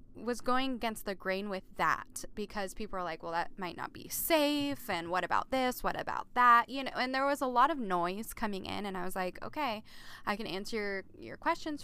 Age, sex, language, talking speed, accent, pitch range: 10-29, female, English, 230 wpm, American, 190-255 Hz